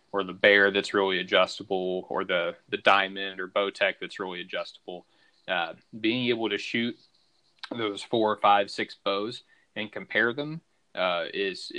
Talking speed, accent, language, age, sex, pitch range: 160 wpm, American, English, 30-49, male, 95-110 Hz